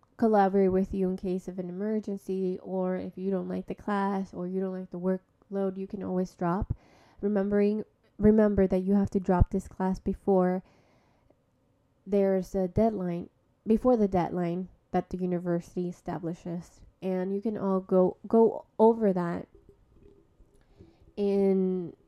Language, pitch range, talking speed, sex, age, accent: English, 185-210 Hz, 145 wpm, female, 20-39, American